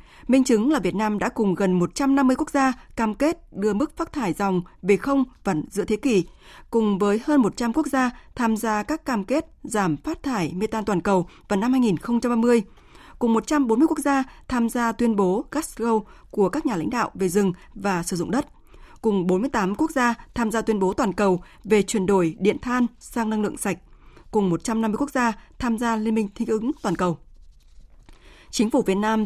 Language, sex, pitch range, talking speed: Vietnamese, female, 200-245 Hz, 205 wpm